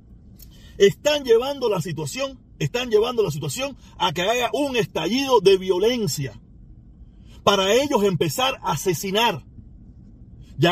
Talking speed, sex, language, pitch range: 120 wpm, male, Spanish, 175-275 Hz